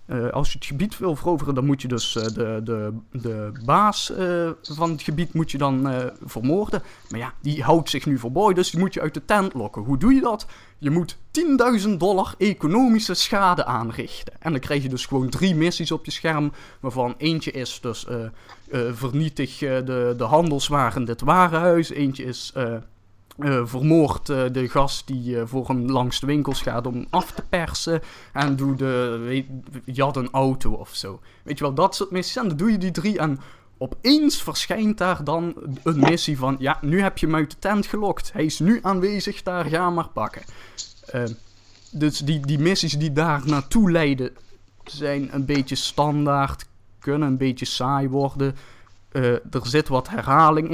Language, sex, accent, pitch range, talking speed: Dutch, male, Dutch, 125-165 Hz, 195 wpm